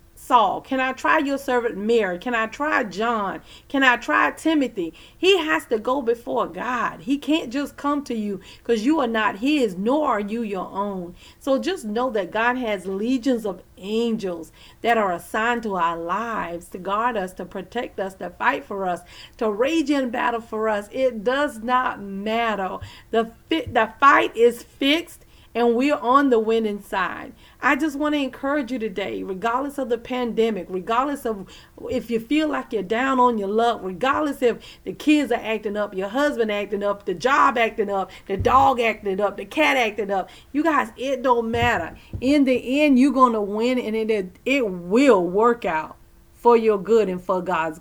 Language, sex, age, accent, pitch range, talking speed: English, female, 40-59, American, 205-260 Hz, 190 wpm